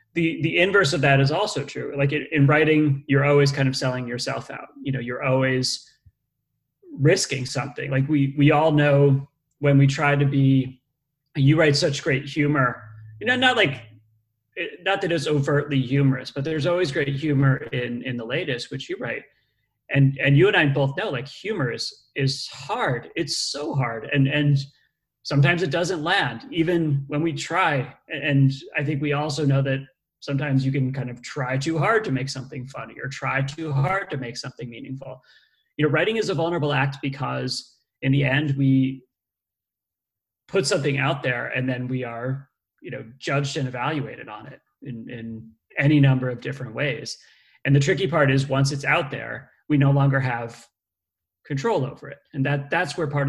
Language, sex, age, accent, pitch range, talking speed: English, male, 30-49, American, 130-150 Hz, 190 wpm